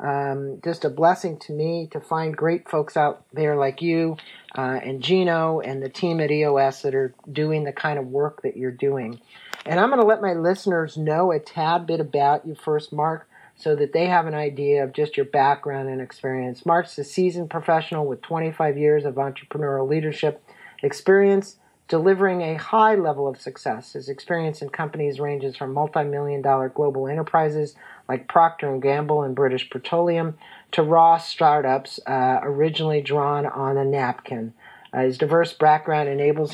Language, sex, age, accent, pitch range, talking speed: English, male, 40-59, American, 140-165 Hz, 175 wpm